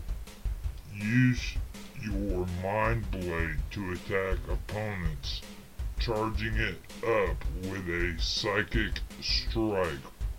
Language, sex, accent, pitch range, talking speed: English, female, American, 80-105 Hz, 80 wpm